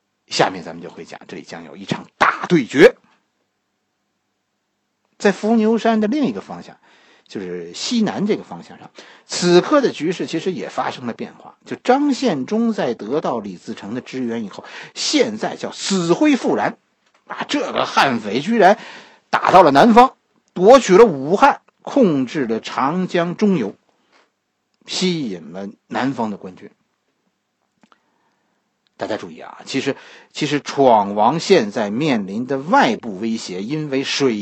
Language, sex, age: Chinese, male, 50-69